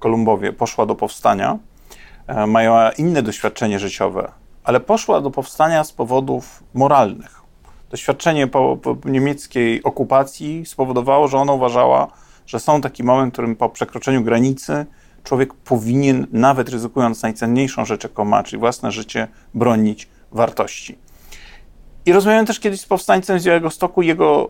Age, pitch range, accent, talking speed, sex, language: 40-59, 115-160 Hz, native, 135 wpm, male, Polish